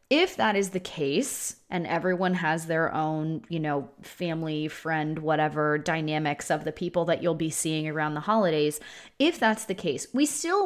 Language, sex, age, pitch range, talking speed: English, female, 20-39, 155-200 Hz, 180 wpm